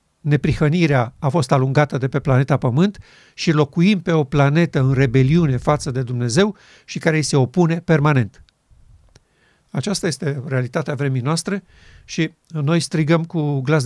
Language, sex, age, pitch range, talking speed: Romanian, male, 50-69, 140-180 Hz, 145 wpm